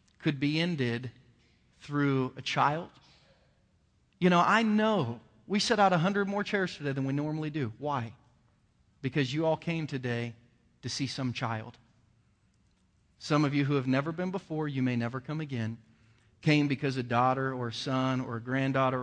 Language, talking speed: English, 175 wpm